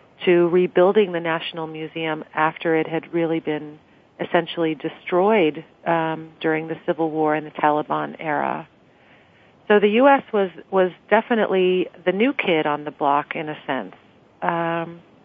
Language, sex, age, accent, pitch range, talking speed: English, female, 40-59, American, 160-180 Hz, 145 wpm